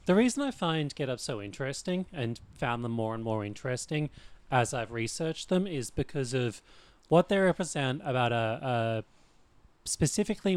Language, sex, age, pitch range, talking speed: English, male, 30-49, 115-165 Hz, 165 wpm